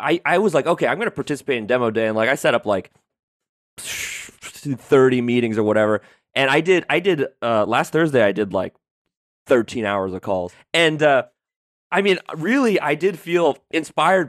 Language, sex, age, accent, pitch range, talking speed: English, male, 20-39, American, 120-160 Hz, 195 wpm